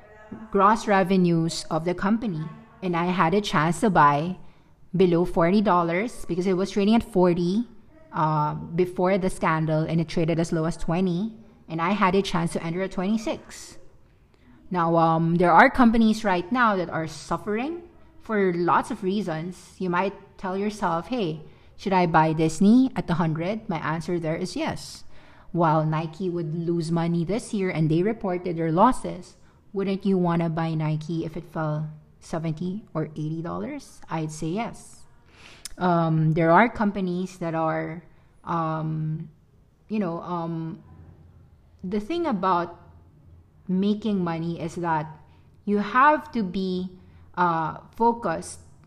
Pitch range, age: 165-205 Hz, 20-39